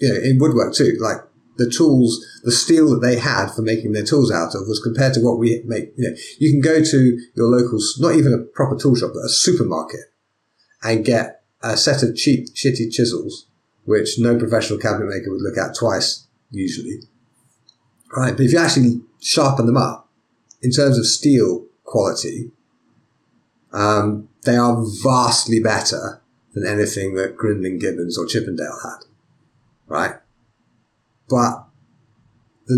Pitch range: 110-130 Hz